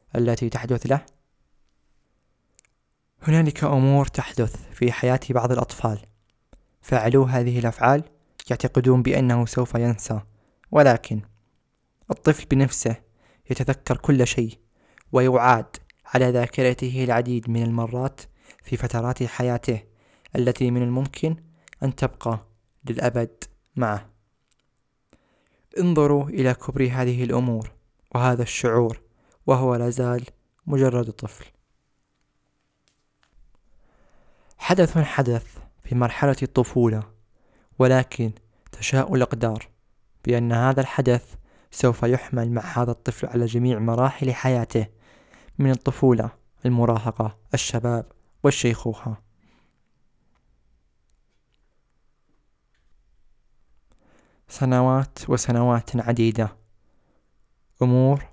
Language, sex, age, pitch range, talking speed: Arabic, male, 20-39, 115-130 Hz, 80 wpm